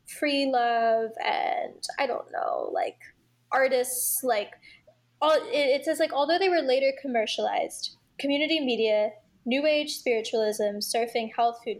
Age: 10-29